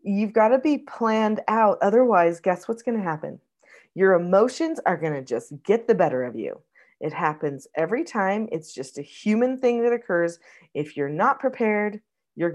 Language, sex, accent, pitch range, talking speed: English, female, American, 175-245 Hz, 185 wpm